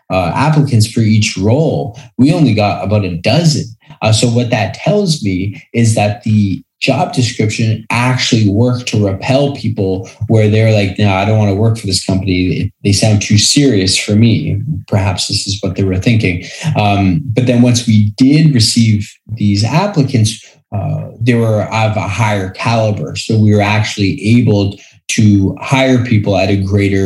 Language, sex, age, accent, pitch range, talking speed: English, male, 20-39, American, 100-125 Hz, 175 wpm